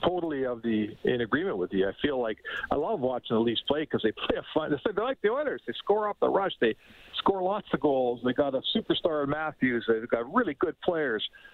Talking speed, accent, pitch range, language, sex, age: 240 wpm, American, 140-185 Hz, English, male, 50-69